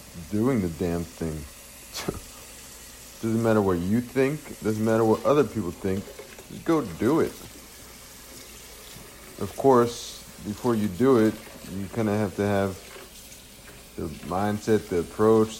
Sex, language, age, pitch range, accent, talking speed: male, English, 50-69, 85-110 Hz, American, 135 wpm